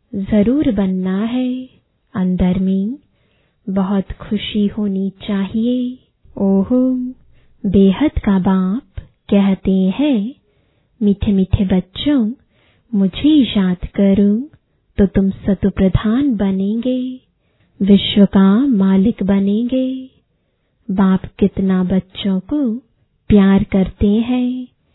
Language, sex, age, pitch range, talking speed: English, female, 20-39, 190-235 Hz, 85 wpm